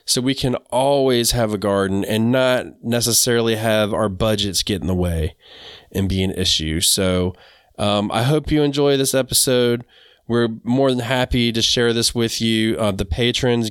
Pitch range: 100-115 Hz